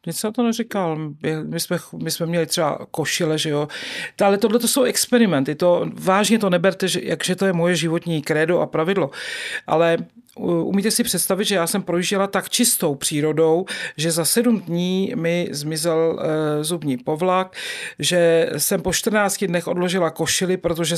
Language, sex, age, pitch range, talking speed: Czech, male, 40-59, 165-195 Hz, 165 wpm